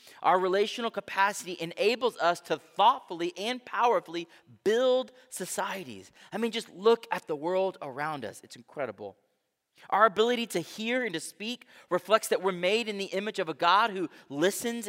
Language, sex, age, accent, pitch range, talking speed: English, male, 30-49, American, 175-220 Hz, 165 wpm